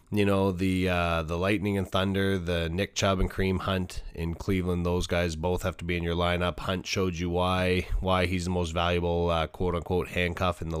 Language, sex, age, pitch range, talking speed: English, male, 20-39, 90-110 Hz, 215 wpm